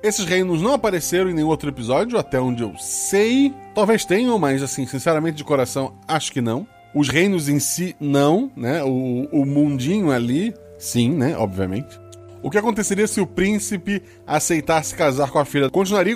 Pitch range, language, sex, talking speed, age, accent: 125-175 Hz, Portuguese, male, 175 wpm, 20-39, Brazilian